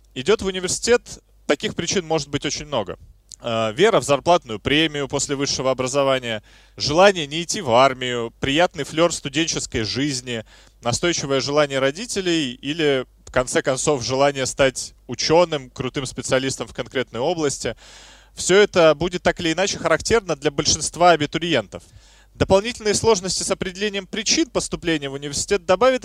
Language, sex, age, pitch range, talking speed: Russian, male, 20-39, 130-180 Hz, 135 wpm